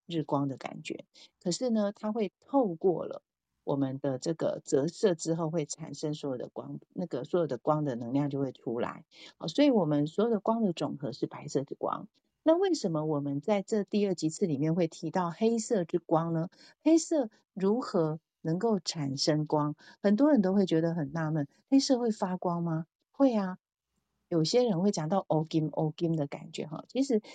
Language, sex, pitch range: Chinese, female, 155-215 Hz